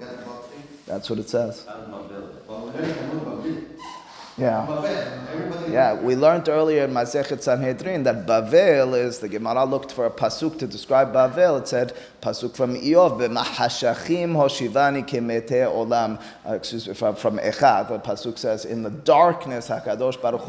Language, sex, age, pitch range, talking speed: English, male, 30-49, 115-150 Hz, 130 wpm